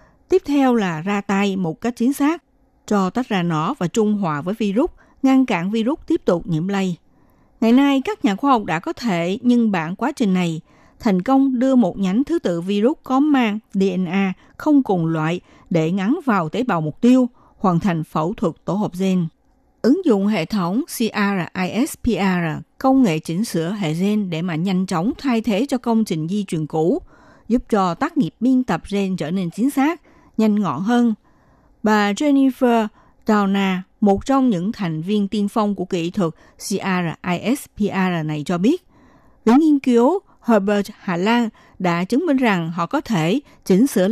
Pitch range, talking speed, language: 185-250 Hz, 185 wpm, Vietnamese